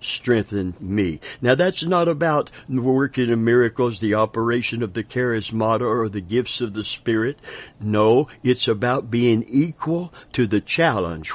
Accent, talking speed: American, 150 wpm